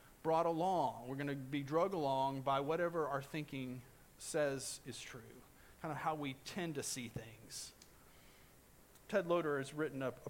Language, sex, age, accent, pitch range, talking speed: English, male, 40-59, American, 125-155 Hz, 170 wpm